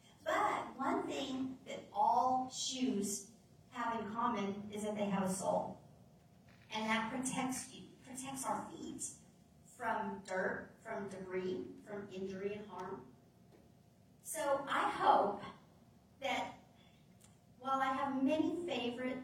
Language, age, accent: English, 40-59, American